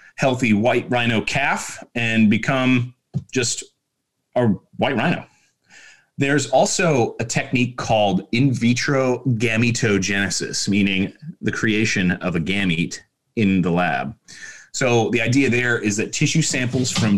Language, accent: English, American